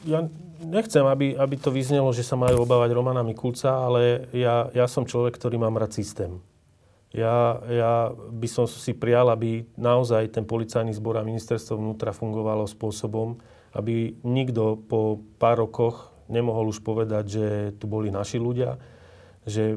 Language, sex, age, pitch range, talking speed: Slovak, male, 30-49, 105-115 Hz, 150 wpm